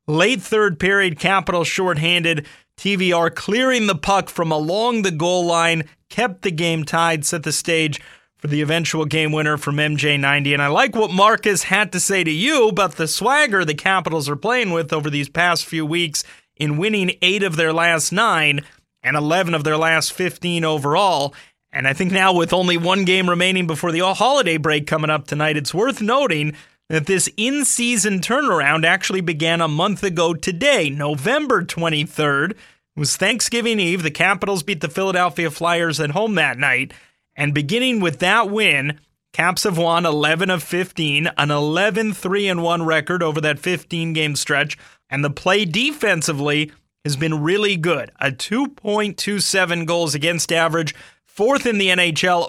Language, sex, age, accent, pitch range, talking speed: English, male, 30-49, American, 155-195 Hz, 165 wpm